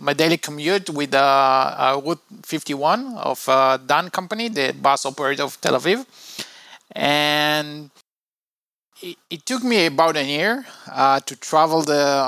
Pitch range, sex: 145-180 Hz, male